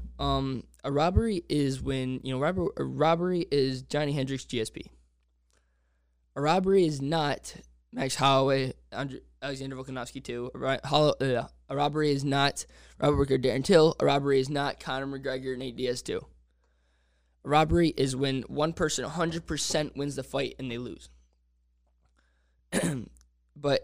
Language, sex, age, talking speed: English, male, 20-39, 145 wpm